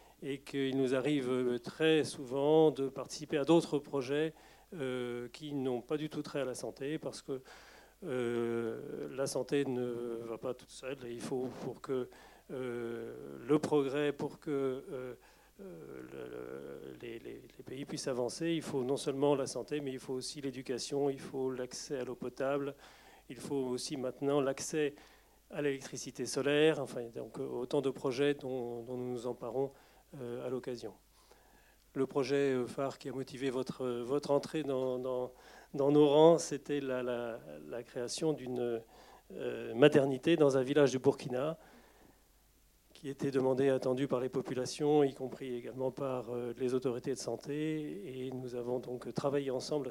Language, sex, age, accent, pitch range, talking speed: French, male, 40-59, French, 125-145 Hz, 165 wpm